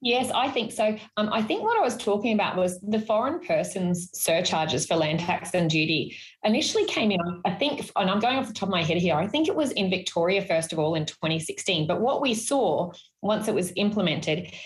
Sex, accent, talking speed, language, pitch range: female, Australian, 230 wpm, English, 165-205 Hz